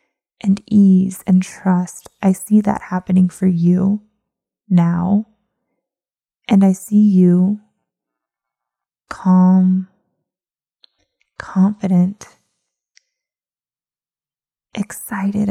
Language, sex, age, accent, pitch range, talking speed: English, female, 20-39, American, 185-215 Hz, 70 wpm